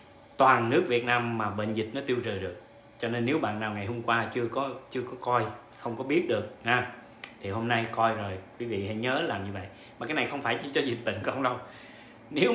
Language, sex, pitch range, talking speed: Vietnamese, male, 110-125 Hz, 255 wpm